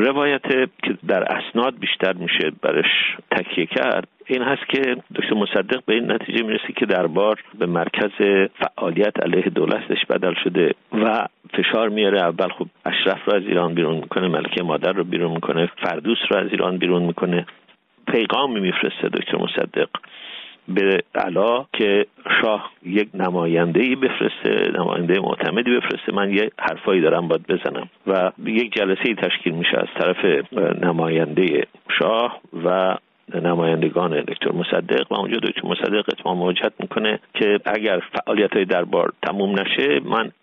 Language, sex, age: Persian, male, 50-69